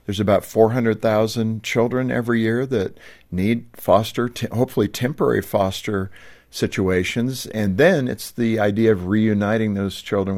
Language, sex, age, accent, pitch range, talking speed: English, male, 50-69, American, 95-110 Hz, 125 wpm